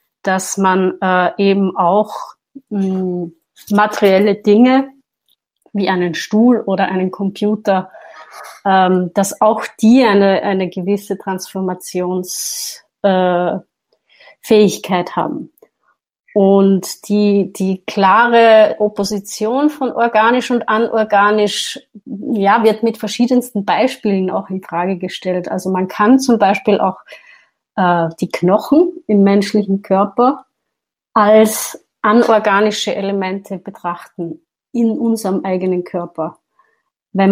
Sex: female